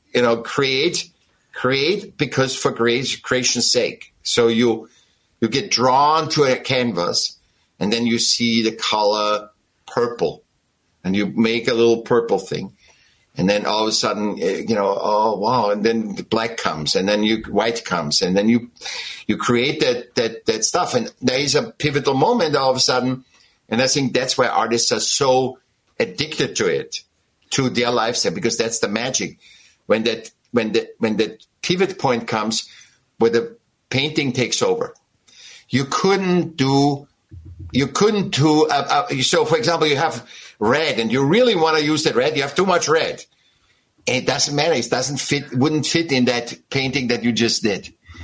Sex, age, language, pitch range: male, 60-79, English, 110-145 Hz